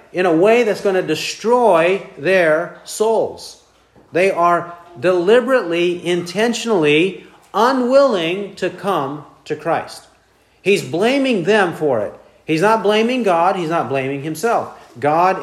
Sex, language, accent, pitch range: male, English, American, 150-210 Hz